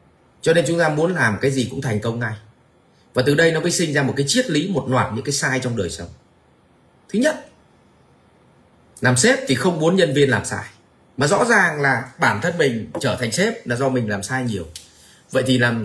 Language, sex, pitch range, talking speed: Vietnamese, male, 110-155 Hz, 230 wpm